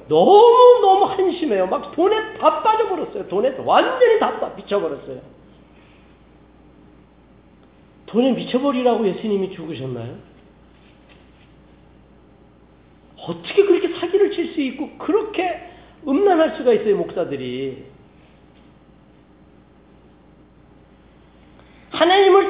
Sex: male